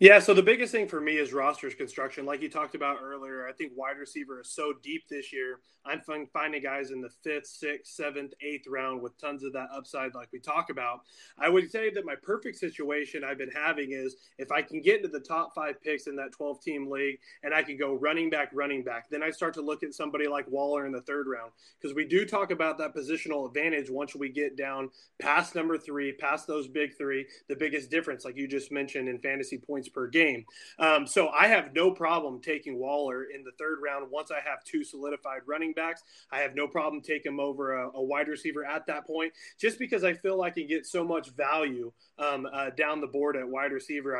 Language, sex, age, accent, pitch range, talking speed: English, male, 20-39, American, 140-160 Hz, 235 wpm